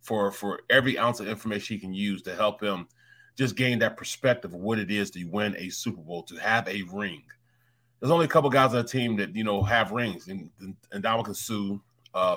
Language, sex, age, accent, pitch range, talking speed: English, male, 30-49, American, 100-125 Hz, 235 wpm